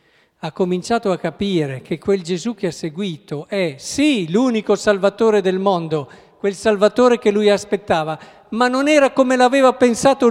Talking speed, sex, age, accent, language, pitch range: 155 wpm, male, 50-69, native, Italian, 150-205 Hz